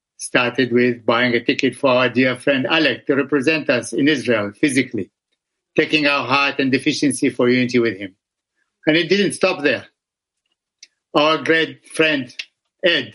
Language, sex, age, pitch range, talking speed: English, male, 60-79, 130-165 Hz, 155 wpm